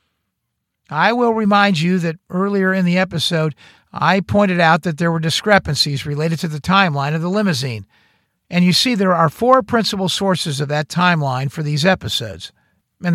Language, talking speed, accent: English, 175 wpm, American